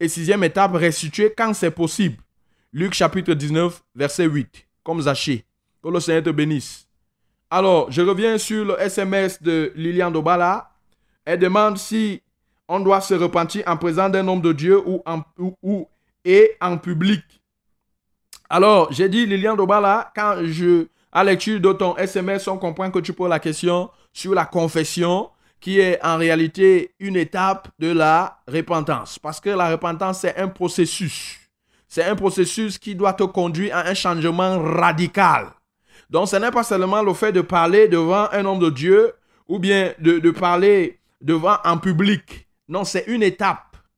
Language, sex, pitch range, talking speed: French, male, 165-195 Hz, 165 wpm